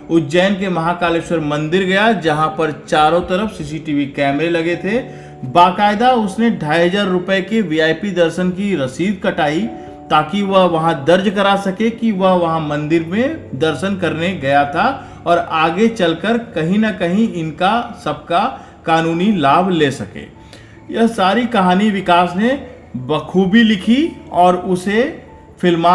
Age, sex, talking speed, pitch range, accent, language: 50-69, male, 140 wpm, 150-190 Hz, native, Hindi